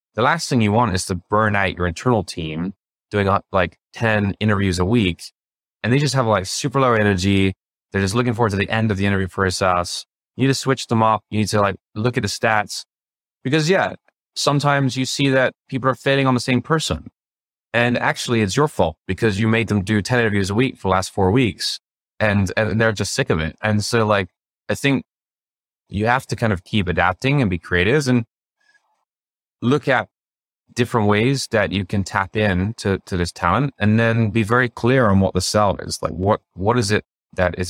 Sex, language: male, English